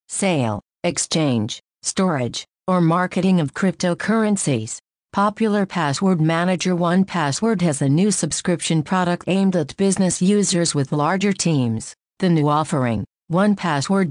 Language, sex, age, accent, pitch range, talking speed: English, female, 50-69, American, 155-190 Hz, 115 wpm